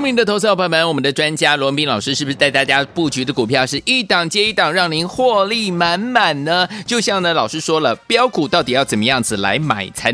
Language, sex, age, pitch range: Chinese, male, 30-49, 145-215 Hz